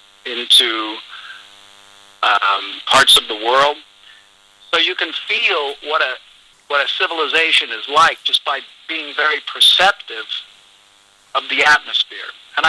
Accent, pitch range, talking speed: American, 100-150 Hz, 125 wpm